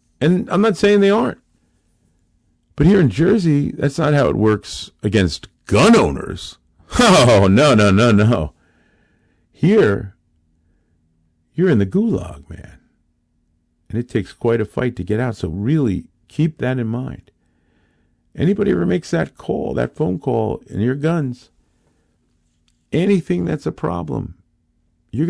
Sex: male